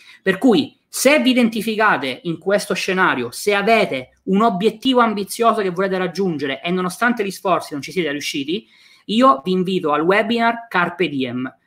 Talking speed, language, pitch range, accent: 155 wpm, Italian, 165-215 Hz, native